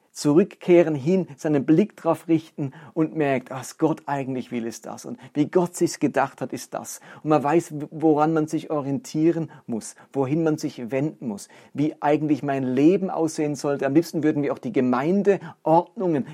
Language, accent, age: German, German, 40-59